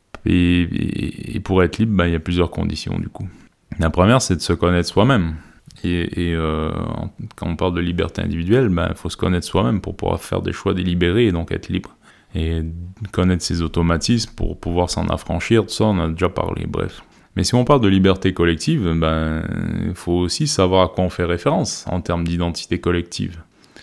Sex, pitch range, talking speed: male, 85-105 Hz, 205 wpm